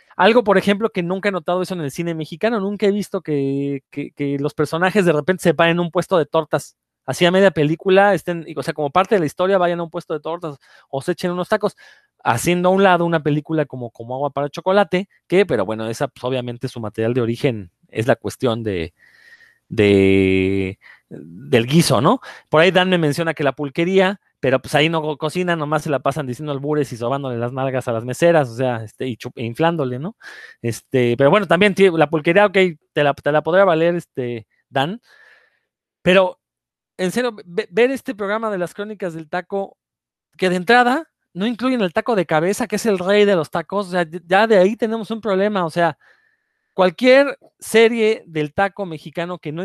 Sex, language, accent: male, Spanish, Mexican